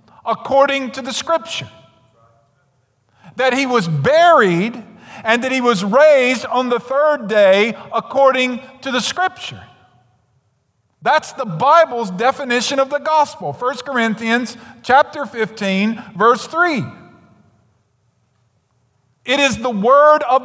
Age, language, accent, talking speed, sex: 50-69, English, American, 115 wpm, male